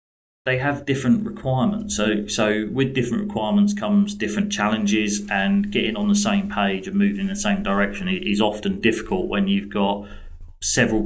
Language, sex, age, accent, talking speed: English, male, 30-49, British, 170 wpm